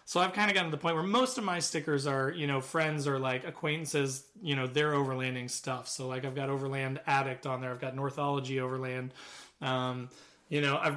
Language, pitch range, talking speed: English, 130-150 Hz, 225 wpm